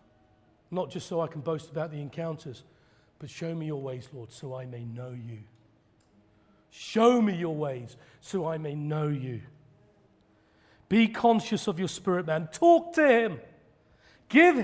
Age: 40-59